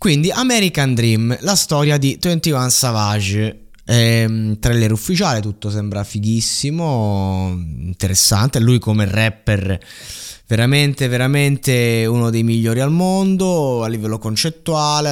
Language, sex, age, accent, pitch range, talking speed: Italian, male, 20-39, native, 110-145 Hz, 110 wpm